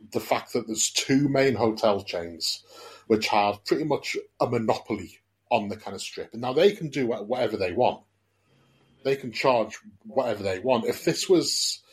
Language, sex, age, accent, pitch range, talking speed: English, male, 30-49, British, 110-150 Hz, 180 wpm